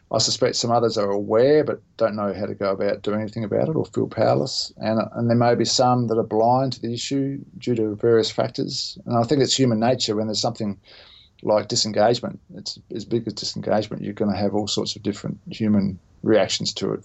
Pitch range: 100-120 Hz